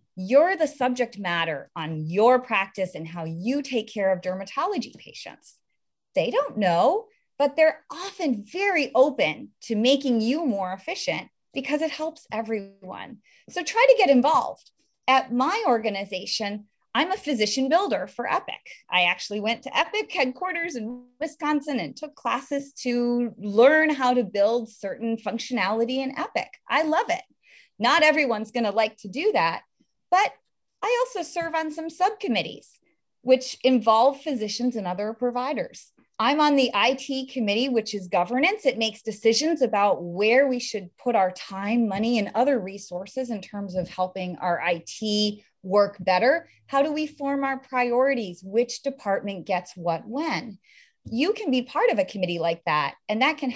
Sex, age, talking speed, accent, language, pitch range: female, 30-49, 160 wpm, American, English, 205-285 Hz